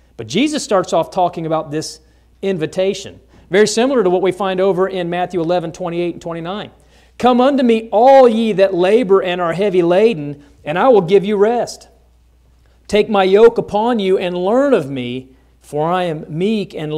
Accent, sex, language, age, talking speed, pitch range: American, male, English, 40-59, 185 wpm, 130-195 Hz